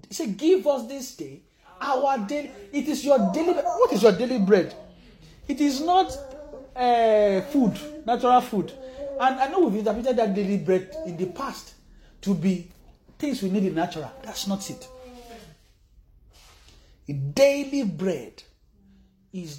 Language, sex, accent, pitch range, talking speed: English, male, Nigerian, 160-260 Hz, 155 wpm